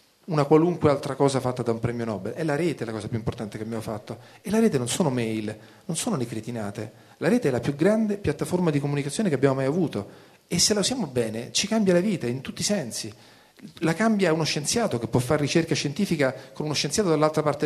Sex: male